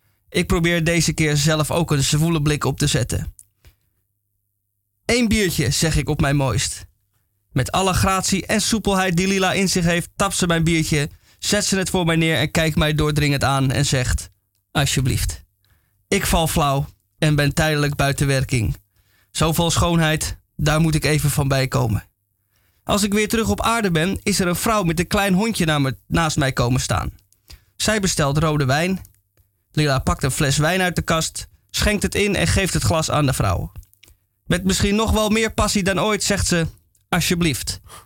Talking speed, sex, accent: 185 wpm, male, Dutch